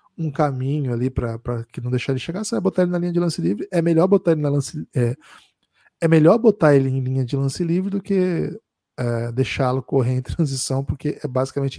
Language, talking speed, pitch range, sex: Portuguese, 225 wpm, 135-170 Hz, male